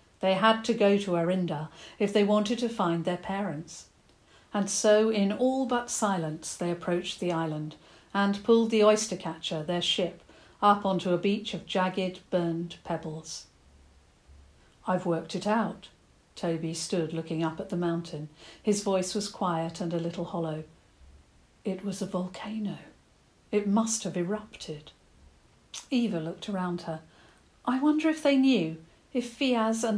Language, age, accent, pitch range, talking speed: English, 50-69, British, 170-210 Hz, 155 wpm